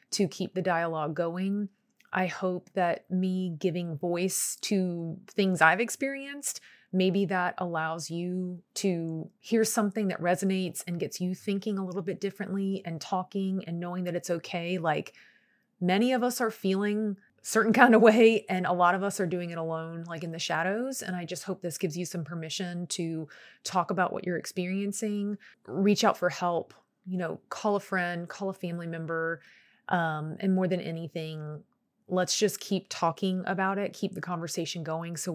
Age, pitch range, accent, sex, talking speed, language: 30-49, 165-195 Hz, American, female, 180 wpm, English